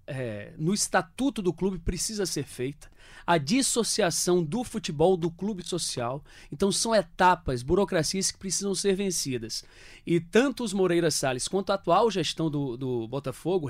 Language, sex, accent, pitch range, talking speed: Portuguese, male, Brazilian, 145-190 Hz, 150 wpm